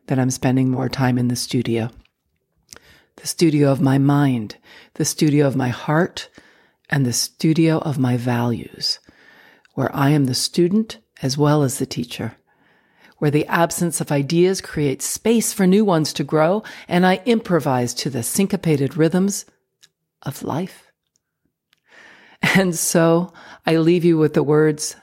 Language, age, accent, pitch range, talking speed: English, 50-69, American, 135-170 Hz, 150 wpm